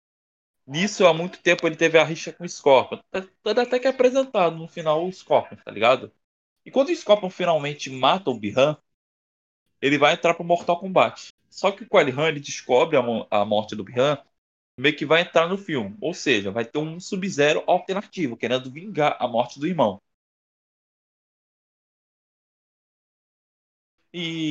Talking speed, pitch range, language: 165 wpm, 115-185 Hz, Portuguese